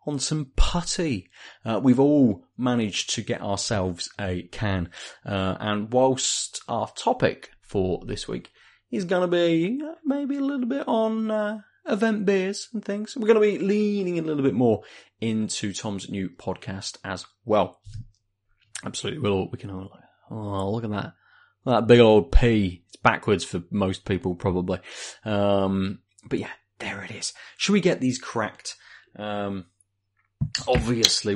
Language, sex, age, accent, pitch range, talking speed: English, male, 30-49, British, 100-145 Hz, 155 wpm